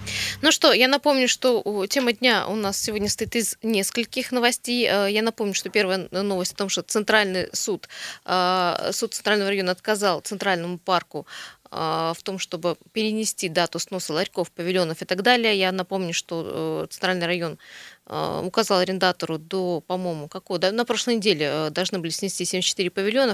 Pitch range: 175-215 Hz